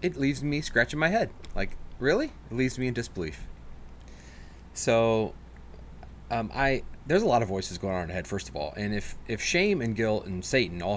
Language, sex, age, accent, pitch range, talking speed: English, male, 30-49, American, 85-115 Hz, 210 wpm